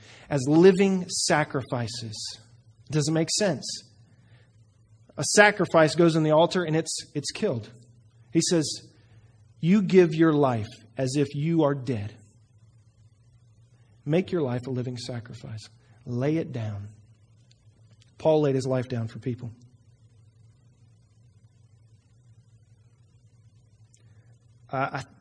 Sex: male